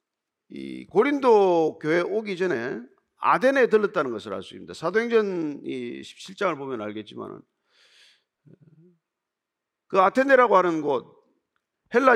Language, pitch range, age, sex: Korean, 170-270 Hz, 40-59, male